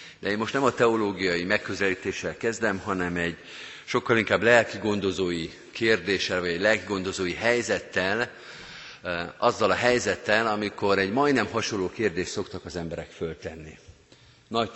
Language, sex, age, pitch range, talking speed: Hungarian, male, 50-69, 90-115 Hz, 125 wpm